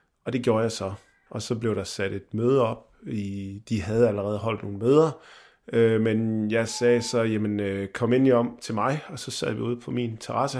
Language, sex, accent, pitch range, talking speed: Danish, male, native, 105-120 Hz, 230 wpm